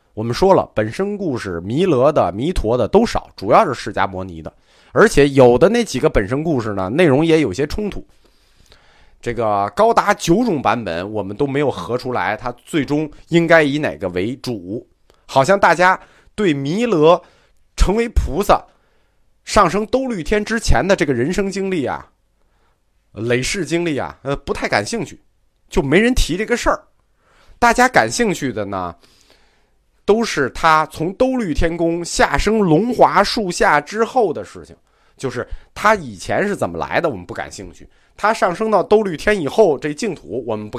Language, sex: Chinese, male